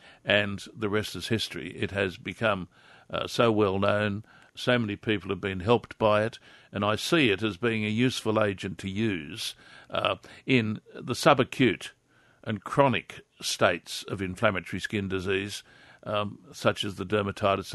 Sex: male